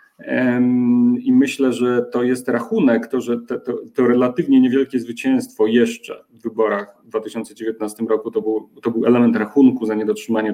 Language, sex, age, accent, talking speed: Polish, male, 40-59, native, 150 wpm